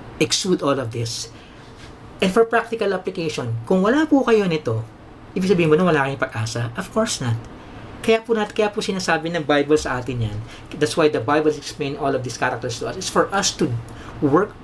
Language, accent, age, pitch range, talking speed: English, Filipino, 40-59, 120-165 Hz, 190 wpm